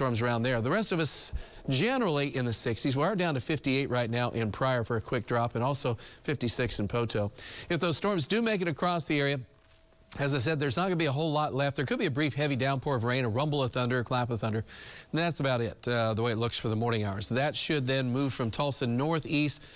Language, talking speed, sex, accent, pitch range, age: English, 255 wpm, male, American, 120-150 Hz, 40-59